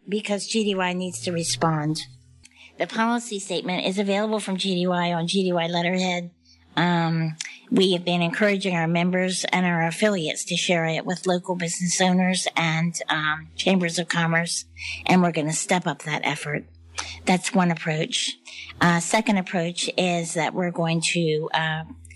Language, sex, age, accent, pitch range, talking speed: English, female, 50-69, American, 155-180 Hz, 155 wpm